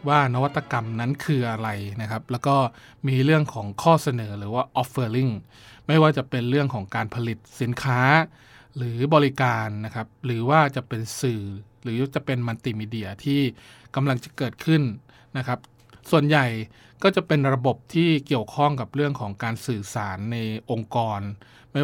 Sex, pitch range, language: male, 115-140 Hz, Thai